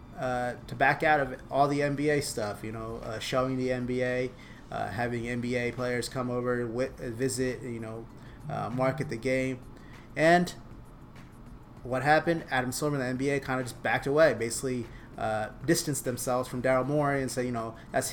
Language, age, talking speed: English, 30-49, 180 wpm